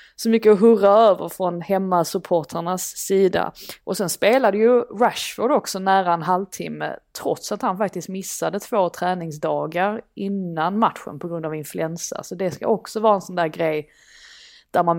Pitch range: 175-215 Hz